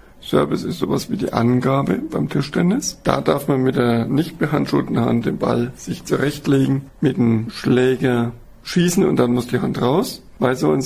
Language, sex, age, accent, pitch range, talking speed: German, male, 60-79, German, 120-150 Hz, 180 wpm